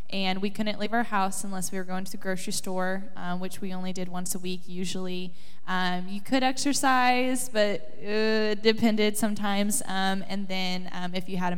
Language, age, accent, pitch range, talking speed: English, 10-29, American, 185-215 Hz, 205 wpm